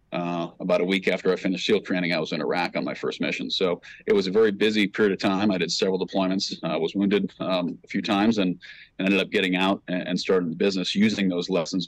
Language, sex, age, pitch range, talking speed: English, male, 30-49, 90-100 Hz, 255 wpm